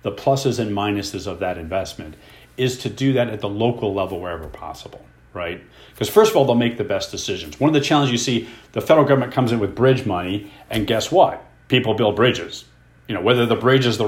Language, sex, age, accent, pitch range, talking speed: English, male, 40-59, American, 100-125 Hz, 230 wpm